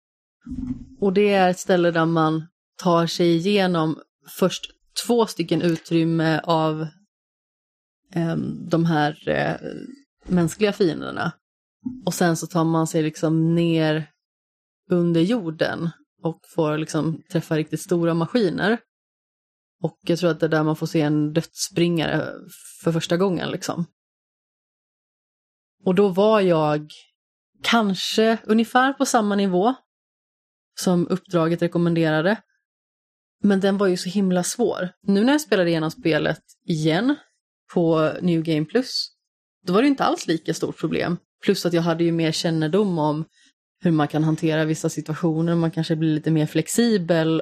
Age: 30-49